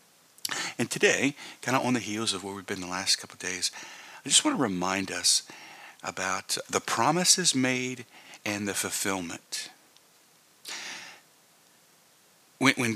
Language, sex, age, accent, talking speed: English, male, 50-69, American, 135 wpm